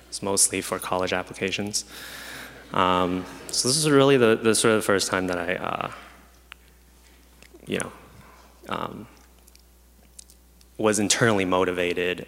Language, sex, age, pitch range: English, male, 20-39, 90-100 Hz